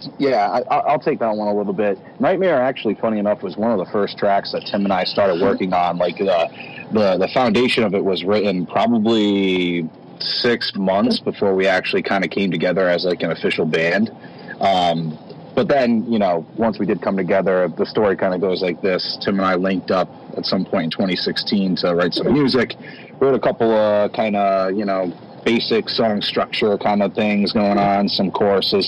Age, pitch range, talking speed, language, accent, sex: 30-49, 90-105 Hz, 205 wpm, English, American, male